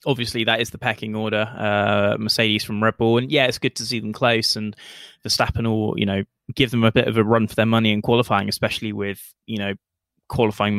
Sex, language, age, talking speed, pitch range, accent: male, English, 20-39, 235 wpm, 105-125 Hz, British